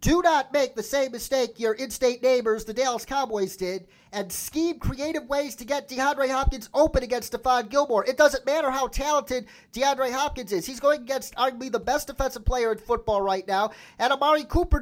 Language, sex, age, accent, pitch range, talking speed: English, male, 30-49, American, 220-275 Hz, 195 wpm